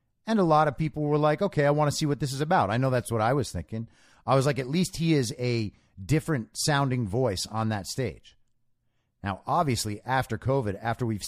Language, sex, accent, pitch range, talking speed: English, male, American, 105-130 Hz, 230 wpm